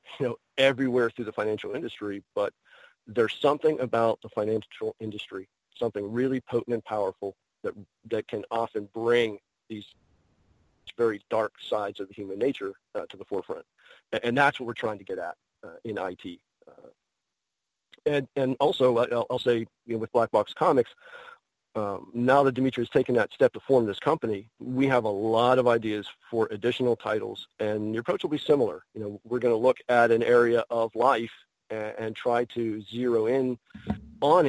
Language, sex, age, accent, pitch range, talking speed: English, male, 40-59, American, 110-130 Hz, 185 wpm